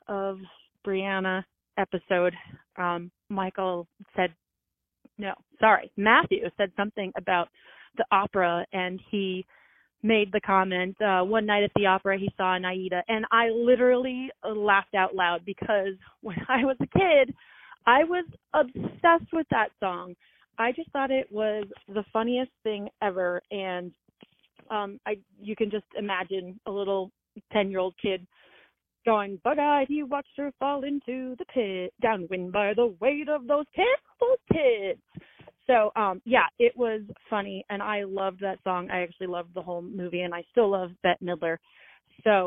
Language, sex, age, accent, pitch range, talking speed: English, female, 30-49, American, 185-230 Hz, 155 wpm